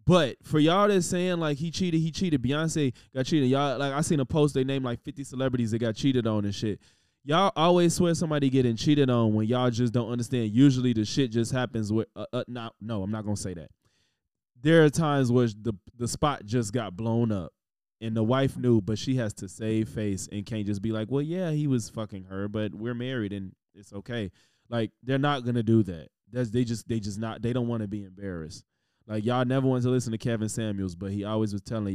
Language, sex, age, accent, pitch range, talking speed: English, male, 20-39, American, 110-130 Hz, 240 wpm